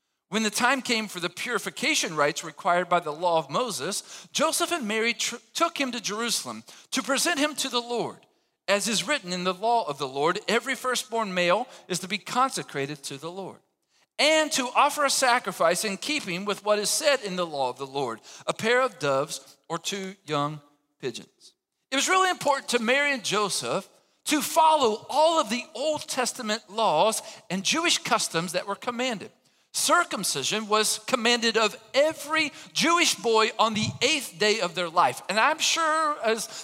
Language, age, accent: English, 40-59, American